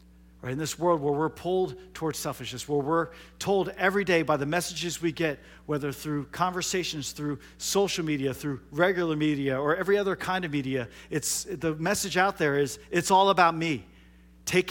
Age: 40-59